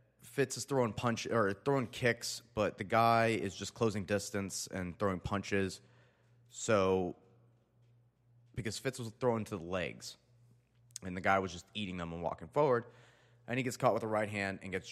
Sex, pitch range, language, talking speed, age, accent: male, 95-120 Hz, English, 180 wpm, 30-49, American